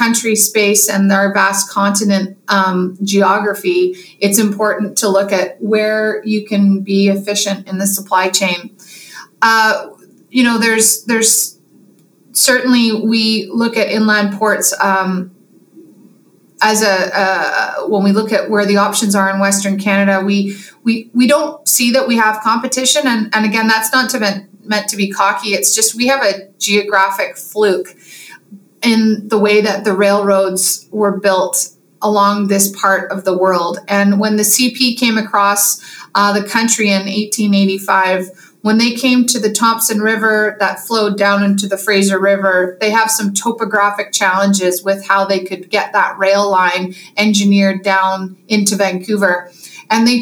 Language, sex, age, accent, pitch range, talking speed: English, female, 30-49, American, 195-220 Hz, 155 wpm